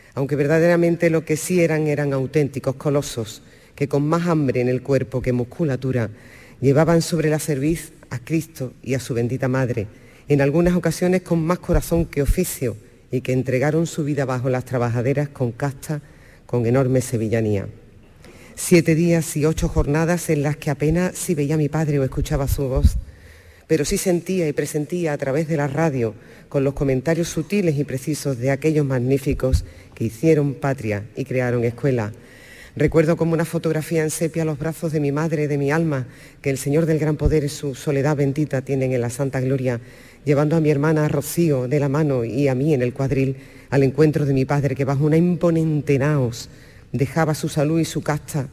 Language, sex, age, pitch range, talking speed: Spanish, female, 40-59, 130-155 Hz, 190 wpm